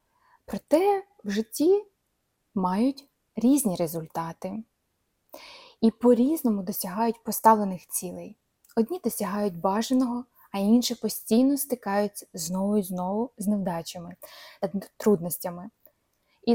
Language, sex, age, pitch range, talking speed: Ukrainian, female, 20-39, 195-260 Hz, 90 wpm